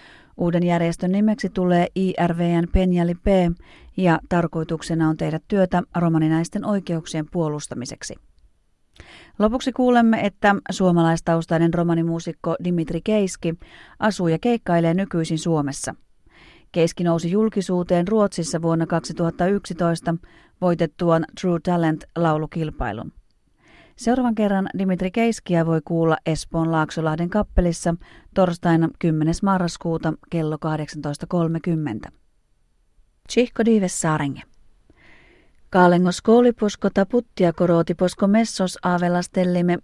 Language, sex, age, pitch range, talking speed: Finnish, female, 30-49, 165-190 Hz, 85 wpm